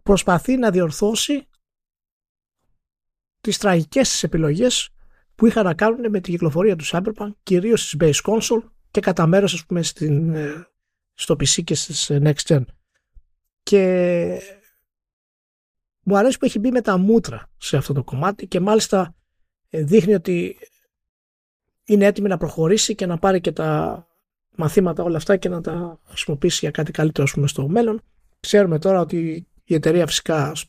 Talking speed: 150 wpm